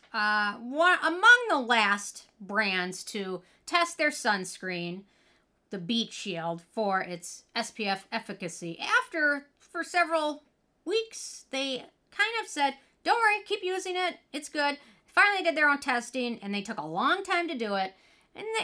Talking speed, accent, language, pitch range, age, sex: 145 wpm, American, English, 200-305 Hz, 40-59, female